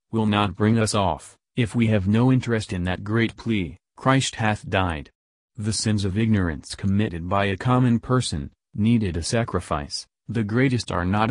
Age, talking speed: 40-59, 175 wpm